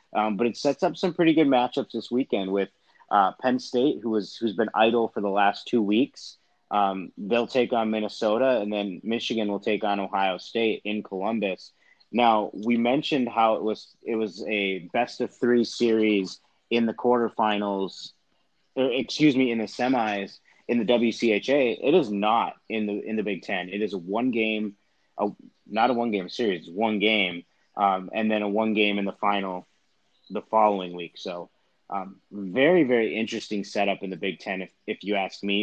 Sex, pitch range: male, 100-115 Hz